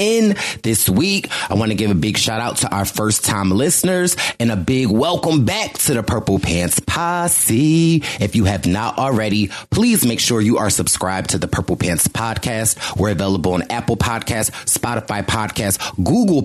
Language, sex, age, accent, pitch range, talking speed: English, male, 30-49, American, 105-145 Hz, 180 wpm